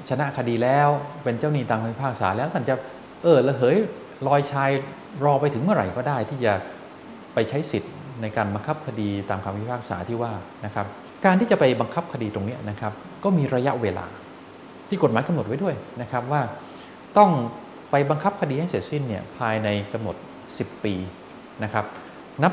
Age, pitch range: 20-39, 110-150 Hz